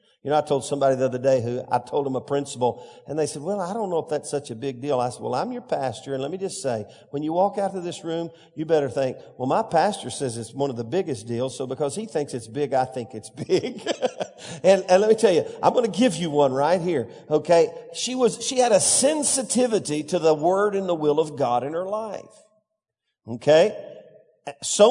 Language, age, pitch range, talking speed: English, 50-69, 150-205 Hz, 245 wpm